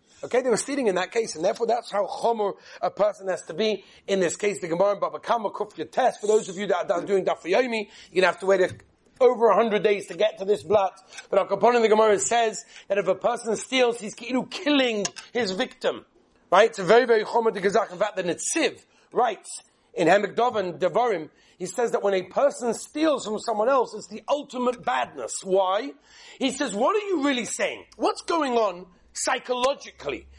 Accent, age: British, 40-59